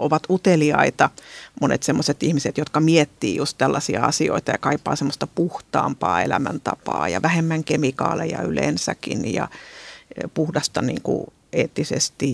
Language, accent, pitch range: Finnish, native, 150-170 Hz